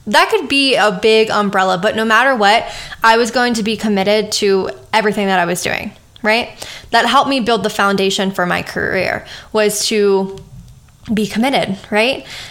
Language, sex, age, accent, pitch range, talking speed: English, female, 10-29, American, 200-235 Hz, 180 wpm